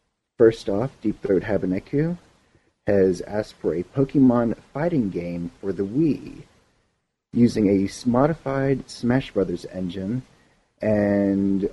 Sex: male